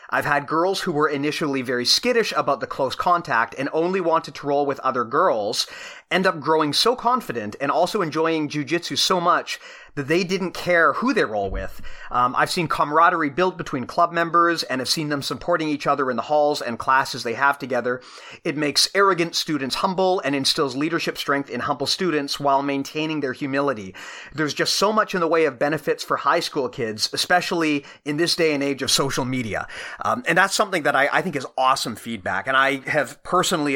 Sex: male